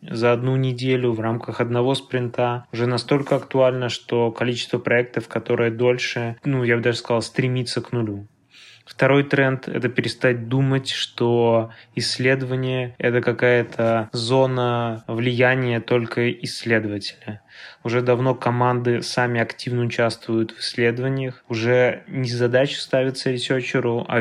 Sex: male